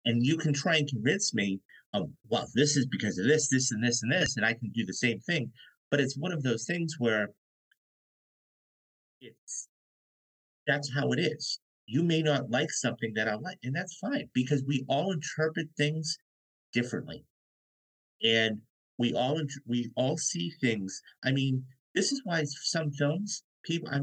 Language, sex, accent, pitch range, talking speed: English, male, American, 120-160 Hz, 175 wpm